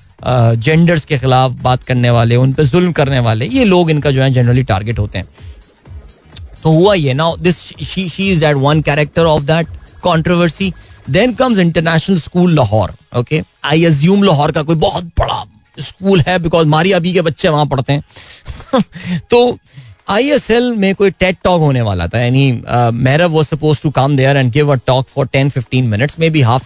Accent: native